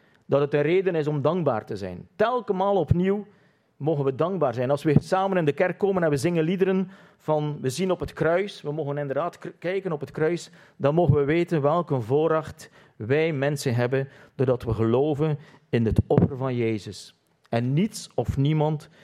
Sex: male